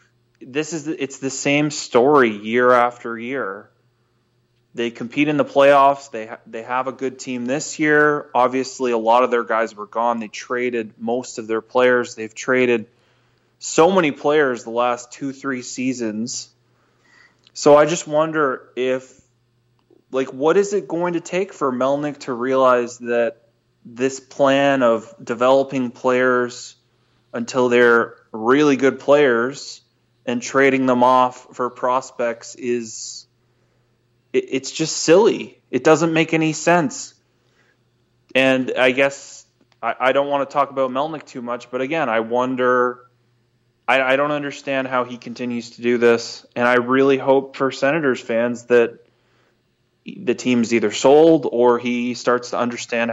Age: 20-39